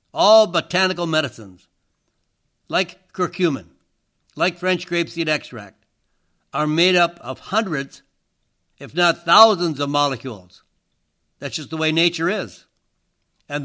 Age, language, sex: 60-79, English, male